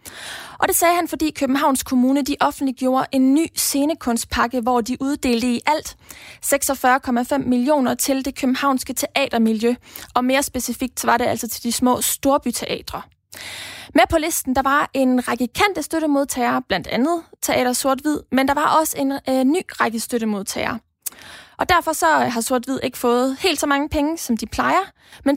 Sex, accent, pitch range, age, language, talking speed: female, native, 245-295 Hz, 20-39, Danish, 170 wpm